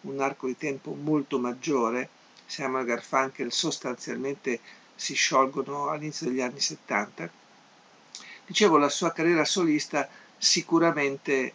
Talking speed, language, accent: 115 wpm, Italian, native